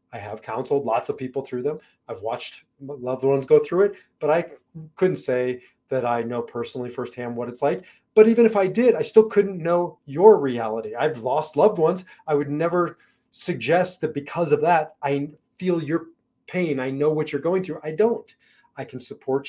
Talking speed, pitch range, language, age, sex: 200 wpm, 135-180 Hz, English, 30-49, male